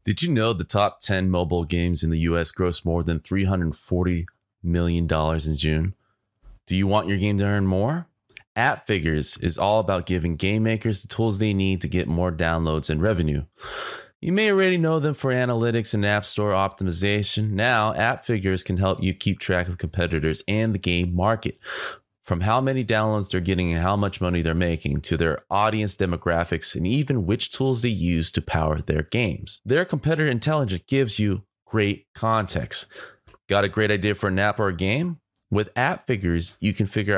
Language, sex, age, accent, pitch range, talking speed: English, male, 20-39, American, 85-110 Hz, 185 wpm